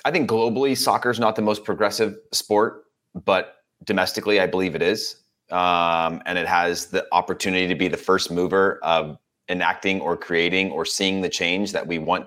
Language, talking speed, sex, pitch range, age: English, 185 wpm, male, 85-105 Hz, 30-49